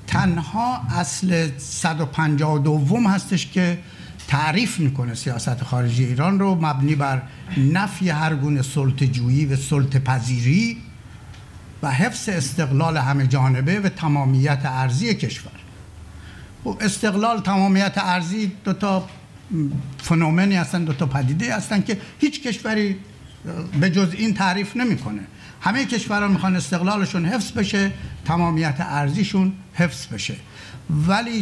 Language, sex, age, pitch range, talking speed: Persian, male, 60-79, 135-190 Hz, 110 wpm